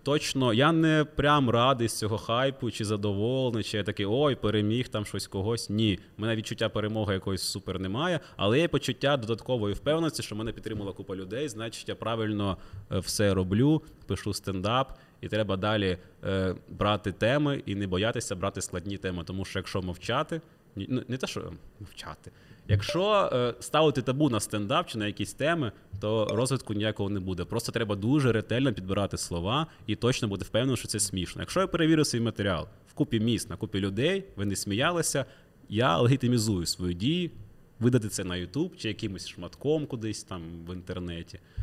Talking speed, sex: 170 wpm, male